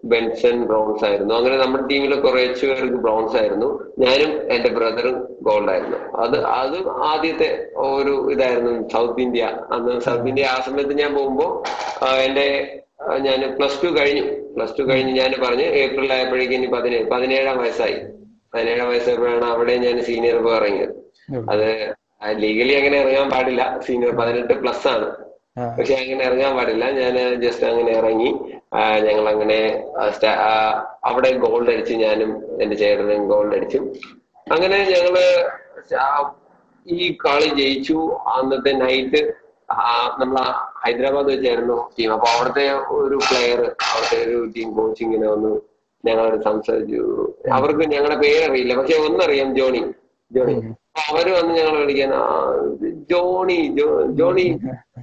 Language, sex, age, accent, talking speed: Malayalam, male, 20-39, native, 120 wpm